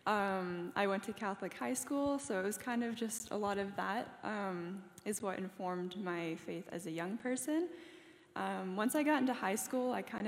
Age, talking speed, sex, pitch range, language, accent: 10-29, 210 wpm, female, 180-225 Hz, English, American